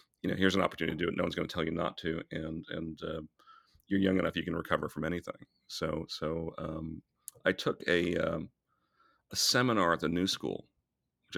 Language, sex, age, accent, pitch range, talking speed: English, male, 40-59, American, 75-90 Hz, 210 wpm